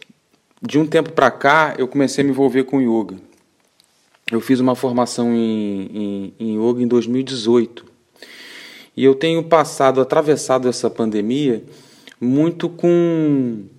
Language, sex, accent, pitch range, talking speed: Portuguese, male, Brazilian, 115-140 Hz, 135 wpm